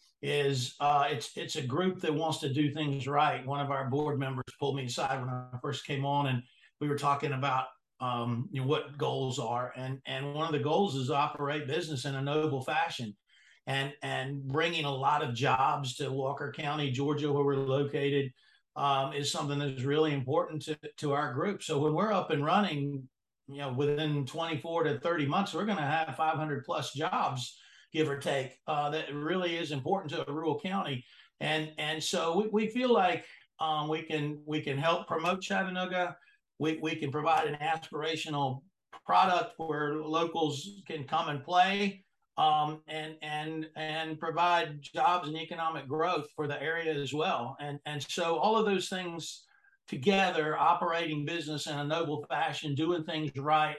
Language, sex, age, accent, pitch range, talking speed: English, male, 50-69, American, 140-165 Hz, 185 wpm